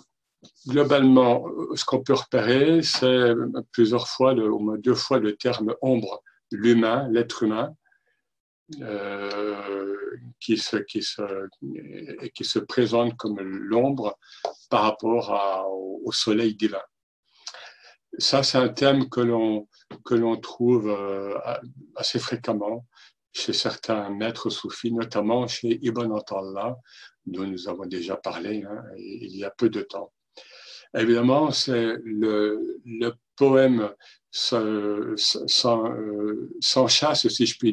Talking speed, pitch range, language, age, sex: 120 wpm, 105-125 Hz, French, 60-79, male